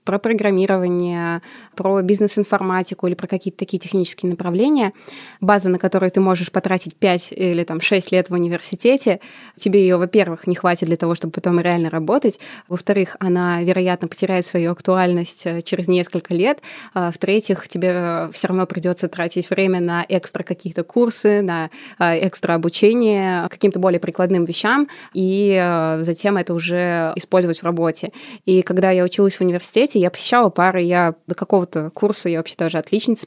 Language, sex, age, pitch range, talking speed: Russian, female, 20-39, 175-200 Hz, 155 wpm